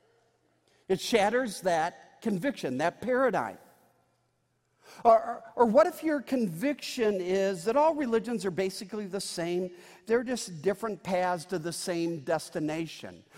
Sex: male